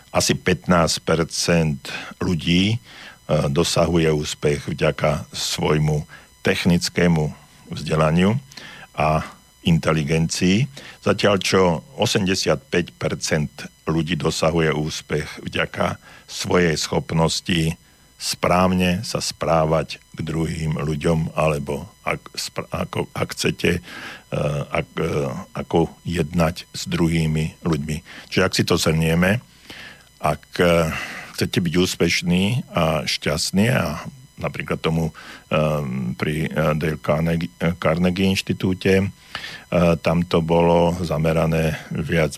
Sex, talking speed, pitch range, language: male, 85 wpm, 80-90 Hz, Slovak